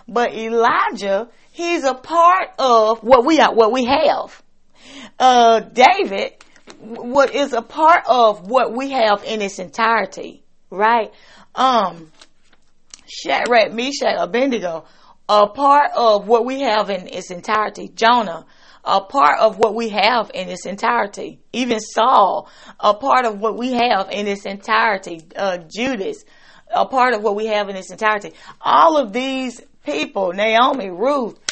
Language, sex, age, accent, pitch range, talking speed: Ukrainian, female, 30-49, American, 215-270 Hz, 150 wpm